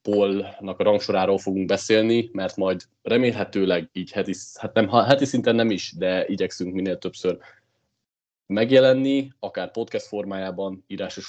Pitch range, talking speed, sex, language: 95-125 Hz, 135 wpm, male, Hungarian